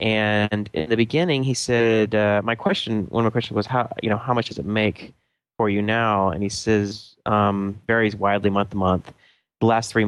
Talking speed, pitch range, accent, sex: 220 wpm, 100-120 Hz, American, male